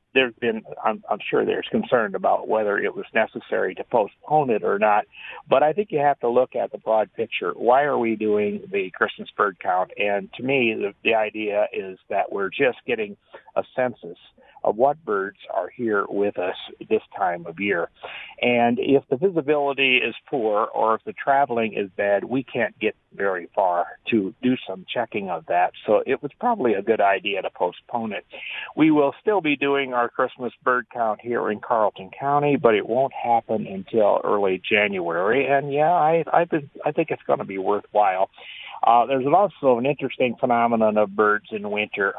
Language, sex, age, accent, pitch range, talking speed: English, male, 50-69, American, 105-140 Hz, 190 wpm